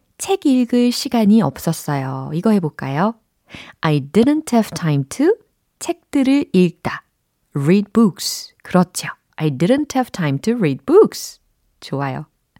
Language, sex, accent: Korean, female, native